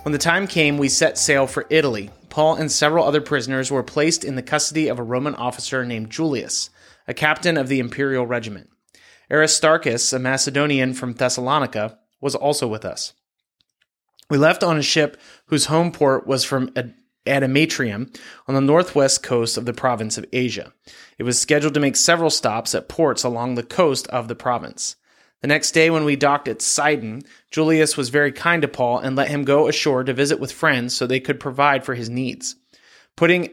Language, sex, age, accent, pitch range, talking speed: English, male, 30-49, American, 130-155 Hz, 190 wpm